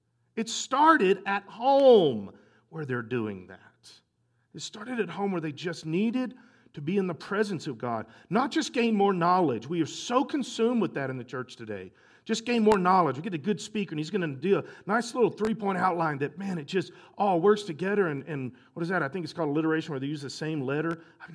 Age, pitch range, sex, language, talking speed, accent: 40-59, 135-200 Hz, male, English, 230 wpm, American